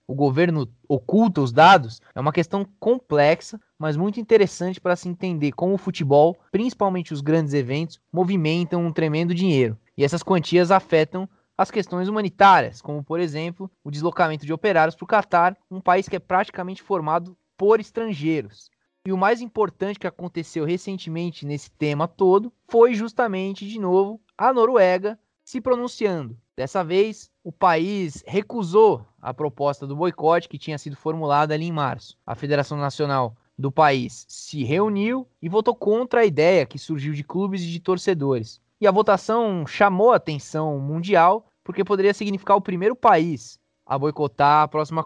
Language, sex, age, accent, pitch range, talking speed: Portuguese, male, 20-39, Brazilian, 150-200 Hz, 160 wpm